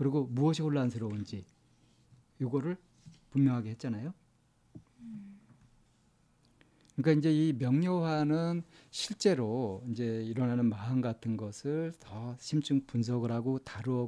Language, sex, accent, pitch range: Korean, male, native, 115-150 Hz